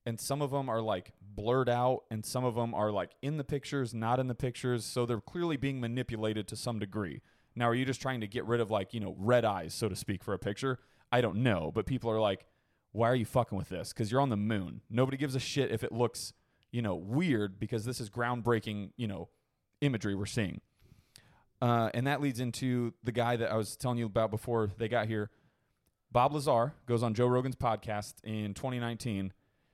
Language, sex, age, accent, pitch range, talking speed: English, male, 30-49, American, 105-125 Hz, 225 wpm